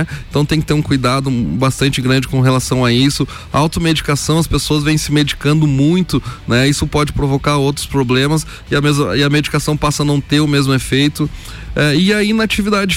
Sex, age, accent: male, 20-39, Brazilian